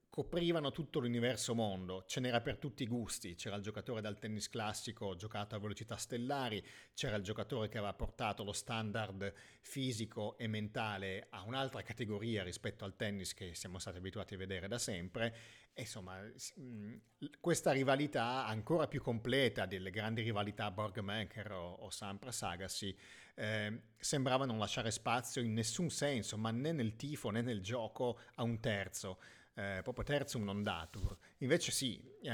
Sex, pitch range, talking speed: male, 100-125 Hz, 160 wpm